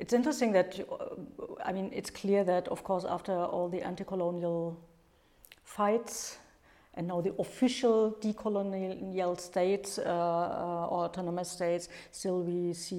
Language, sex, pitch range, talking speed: English, female, 175-200 Hz, 135 wpm